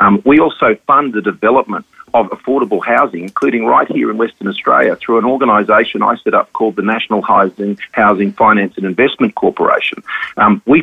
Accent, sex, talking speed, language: Australian, male, 175 wpm, English